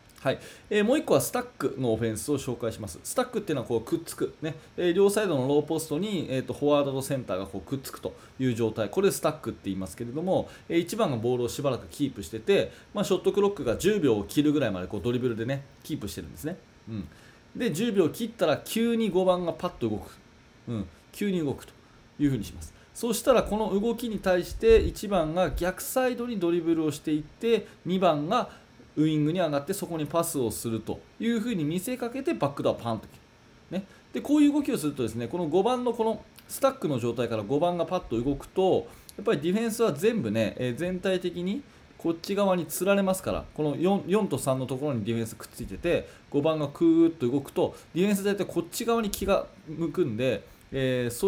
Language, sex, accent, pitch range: Japanese, male, native, 125-200 Hz